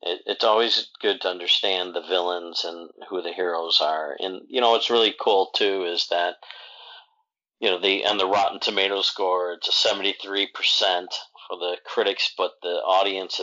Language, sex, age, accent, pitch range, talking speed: English, male, 40-59, American, 95-120 Hz, 180 wpm